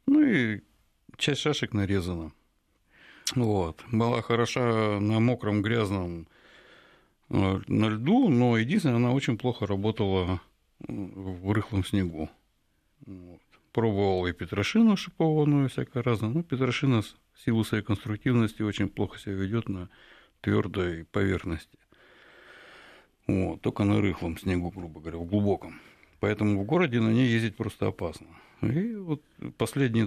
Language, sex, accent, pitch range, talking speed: Russian, male, native, 95-120 Hz, 125 wpm